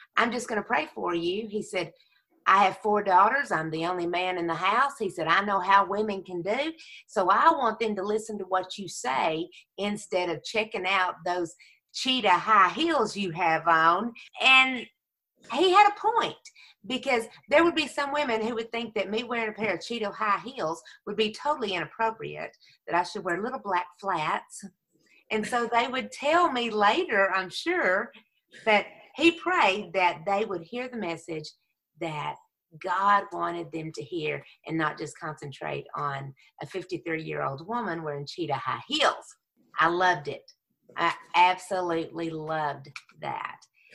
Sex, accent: female, American